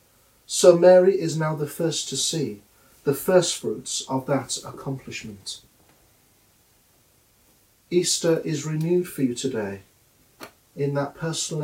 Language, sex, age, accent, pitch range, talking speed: English, male, 40-59, British, 115-165 Hz, 120 wpm